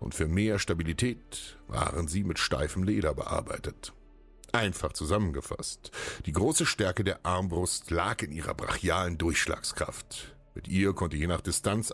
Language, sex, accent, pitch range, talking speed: German, male, German, 85-105 Hz, 140 wpm